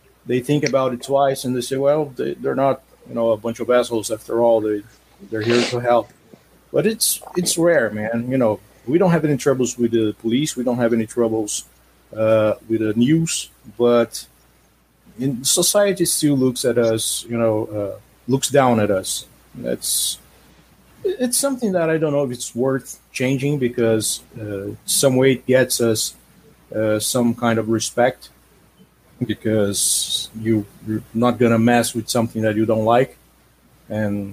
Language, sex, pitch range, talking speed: English, male, 110-130 Hz, 175 wpm